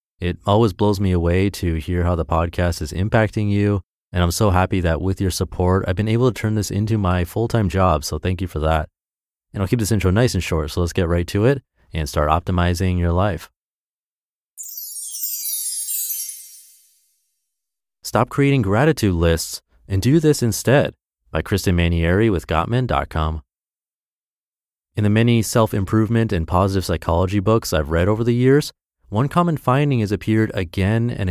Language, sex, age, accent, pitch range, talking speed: English, male, 30-49, American, 85-110 Hz, 170 wpm